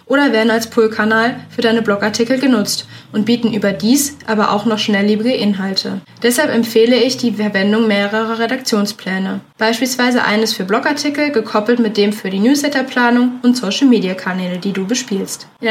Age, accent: 20-39, German